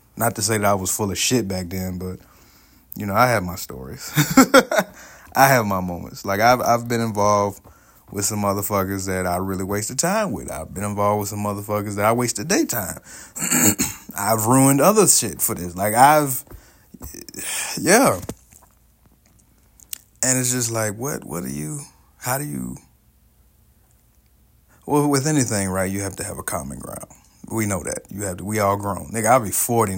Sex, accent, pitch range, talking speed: male, American, 95-125 Hz, 180 wpm